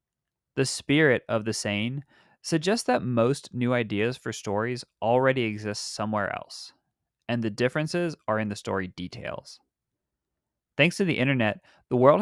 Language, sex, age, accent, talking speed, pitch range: English, male, 20-39, American, 145 wpm, 110-145 Hz